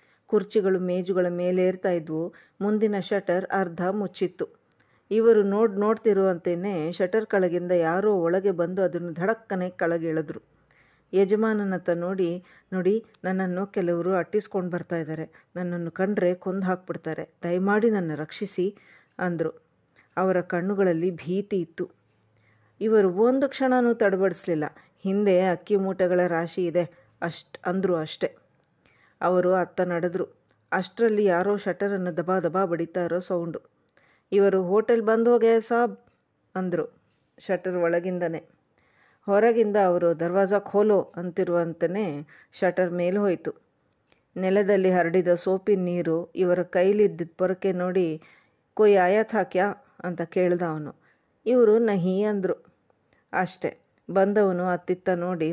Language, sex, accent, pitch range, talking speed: Kannada, female, native, 175-200 Hz, 100 wpm